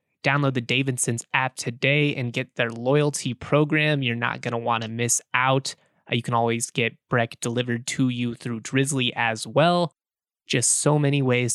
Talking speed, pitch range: 180 wpm, 120-150 Hz